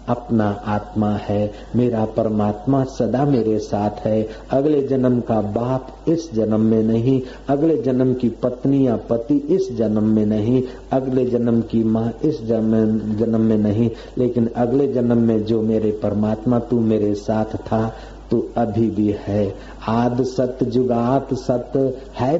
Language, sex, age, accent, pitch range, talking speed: Hindi, male, 50-69, native, 110-130 Hz, 150 wpm